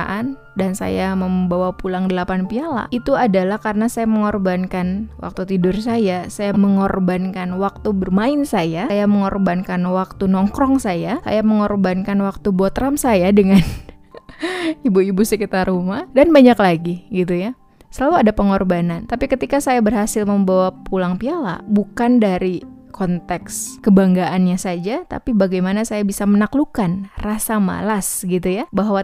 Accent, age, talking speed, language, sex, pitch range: native, 20-39, 130 wpm, Indonesian, female, 185-220 Hz